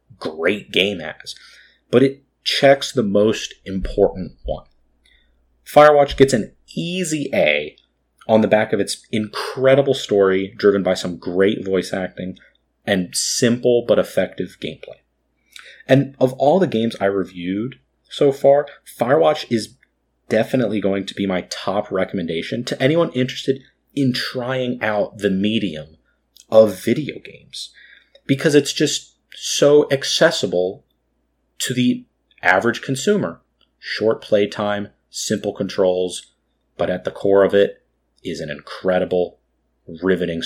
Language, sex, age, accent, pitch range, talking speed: English, male, 30-49, American, 90-130 Hz, 125 wpm